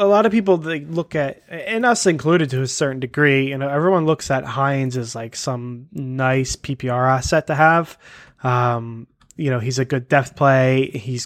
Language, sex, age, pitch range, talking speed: English, male, 20-39, 120-145 Hz, 195 wpm